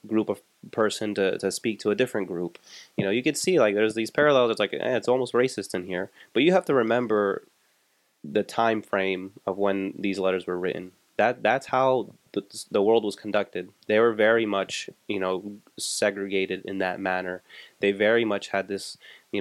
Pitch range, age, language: 95-110 Hz, 20-39, English